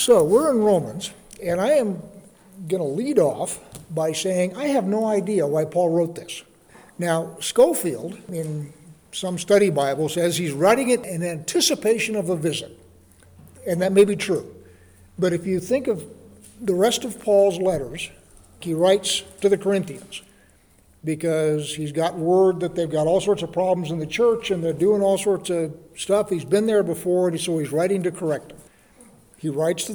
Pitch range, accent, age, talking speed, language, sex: 165-205 Hz, American, 60-79, 180 wpm, English, male